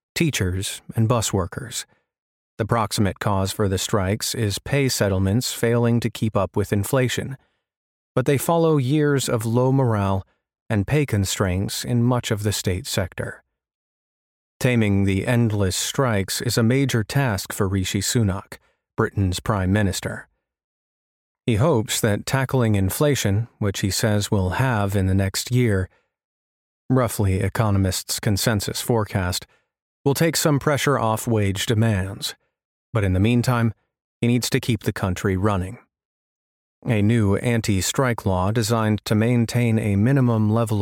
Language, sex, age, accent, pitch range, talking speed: English, male, 40-59, American, 100-125 Hz, 140 wpm